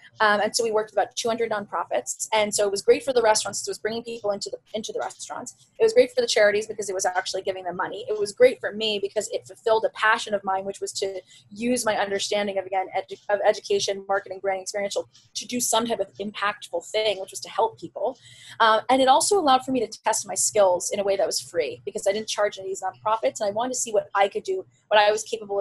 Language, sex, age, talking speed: English, female, 20-39, 270 wpm